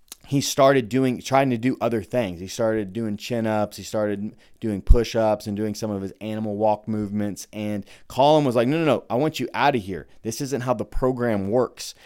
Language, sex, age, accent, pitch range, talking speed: English, male, 30-49, American, 105-130 Hz, 225 wpm